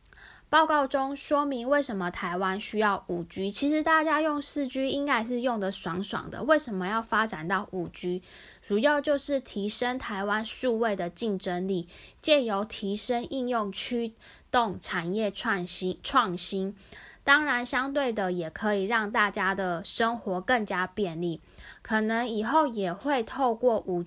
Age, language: 10-29, Chinese